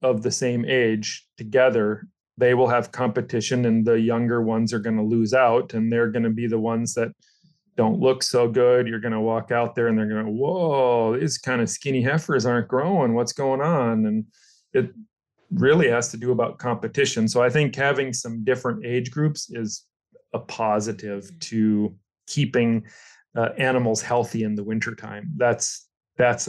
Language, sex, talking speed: English, male, 180 wpm